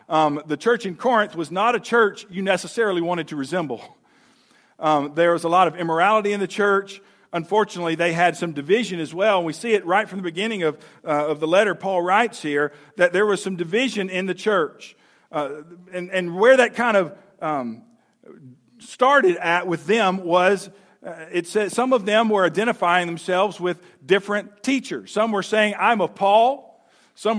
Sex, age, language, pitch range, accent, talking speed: male, 50-69, English, 175-225 Hz, American, 190 wpm